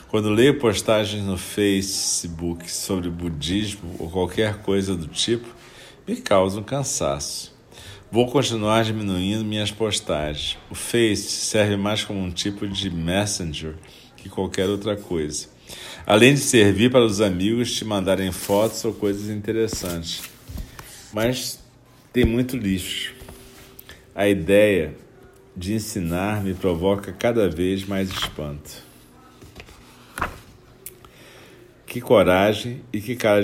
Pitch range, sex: 90-115 Hz, male